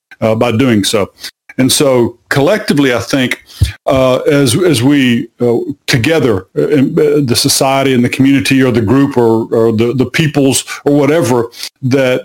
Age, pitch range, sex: 50-69, 115-140 Hz, male